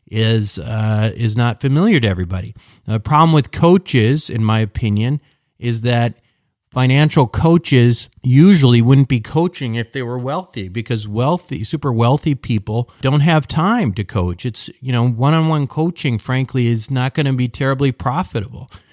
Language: English